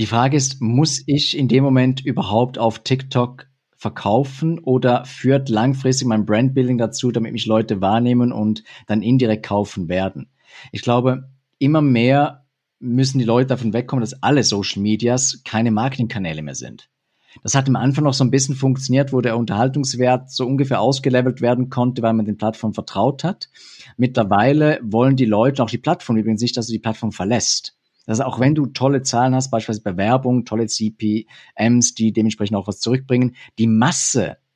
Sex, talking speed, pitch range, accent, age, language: male, 170 wpm, 115-135 Hz, German, 50-69, German